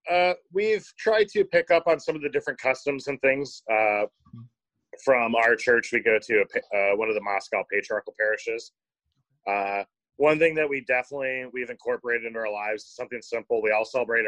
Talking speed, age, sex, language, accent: 195 wpm, 30-49, male, English, American